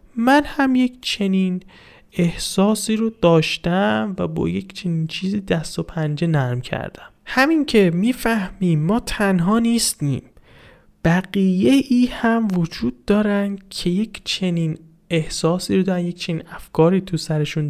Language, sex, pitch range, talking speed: Persian, male, 160-210 Hz, 130 wpm